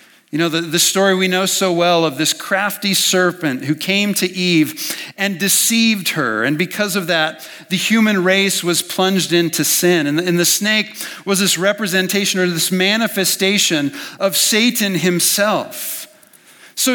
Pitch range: 145-205 Hz